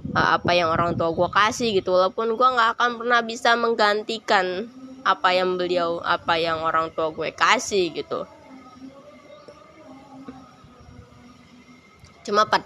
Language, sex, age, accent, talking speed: Indonesian, female, 20-39, native, 125 wpm